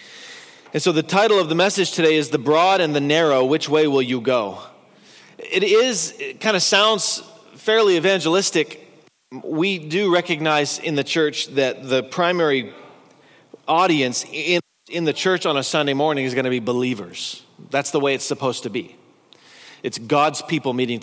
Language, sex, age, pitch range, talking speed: English, male, 40-59, 140-180 Hz, 175 wpm